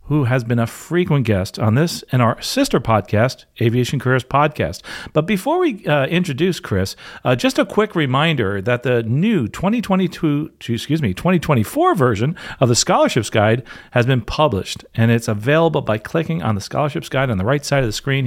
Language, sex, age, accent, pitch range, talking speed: English, male, 40-59, American, 110-150 Hz, 185 wpm